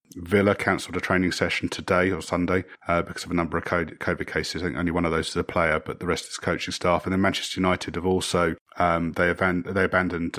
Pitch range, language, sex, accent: 85-95 Hz, English, male, British